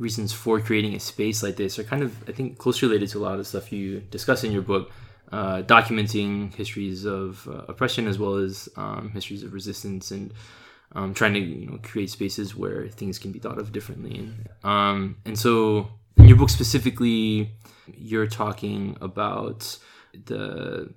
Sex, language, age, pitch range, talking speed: male, English, 20-39, 100-110 Hz, 185 wpm